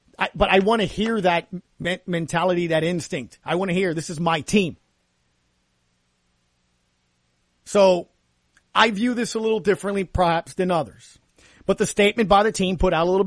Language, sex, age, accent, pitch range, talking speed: English, male, 40-59, American, 160-195 Hz, 165 wpm